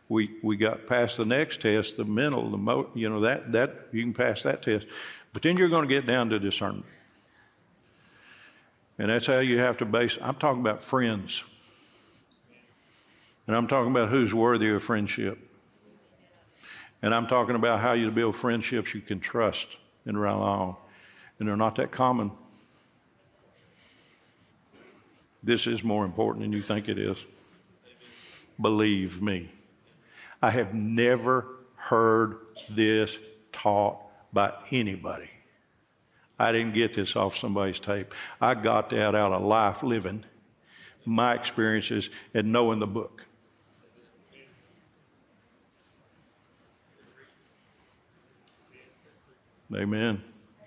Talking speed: 125 wpm